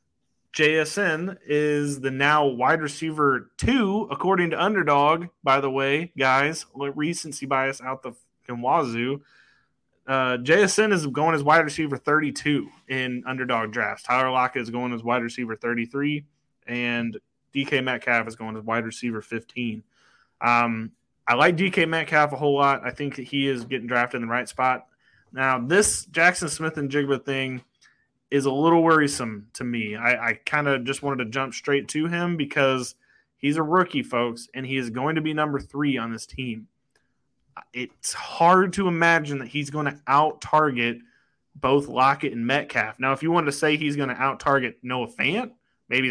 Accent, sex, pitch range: American, male, 125-155 Hz